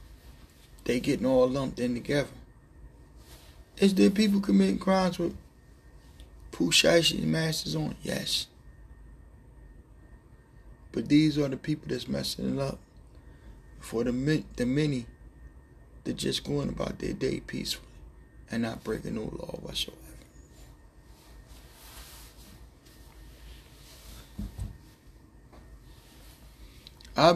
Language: English